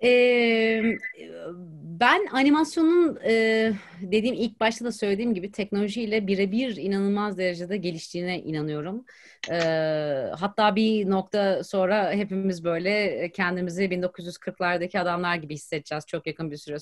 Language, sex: Turkish, female